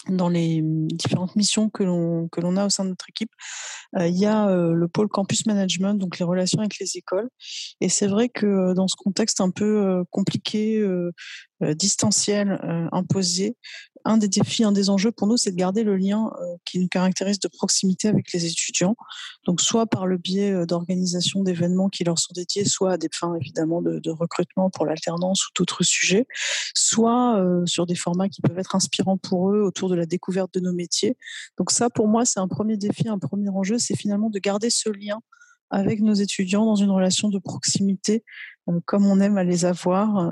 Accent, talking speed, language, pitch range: French, 205 wpm, French, 180-215 Hz